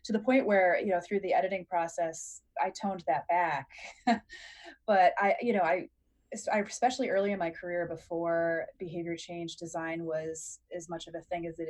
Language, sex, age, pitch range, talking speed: English, female, 20-39, 170-210 Hz, 185 wpm